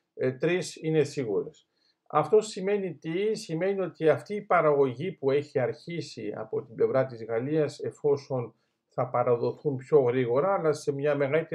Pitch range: 135-180 Hz